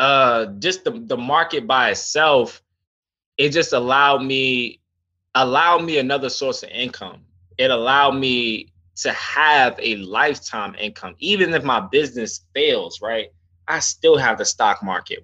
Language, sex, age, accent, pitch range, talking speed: English, male, 20-39, American, 105-160 Hz, 145 wpm